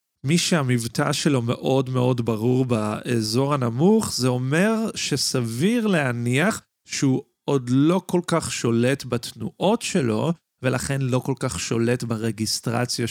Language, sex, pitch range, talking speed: Hebrew, male, 115-140 Hz, 120 wpm